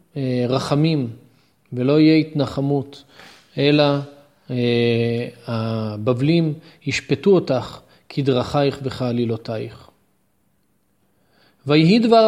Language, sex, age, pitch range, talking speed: Hebrew, male, 40-59, 140-185 Hz, 65 wpm